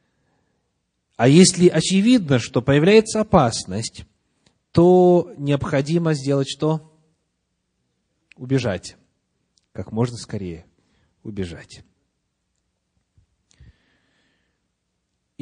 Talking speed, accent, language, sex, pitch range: 60 wpm, native, Russian, male, 100-155 Hz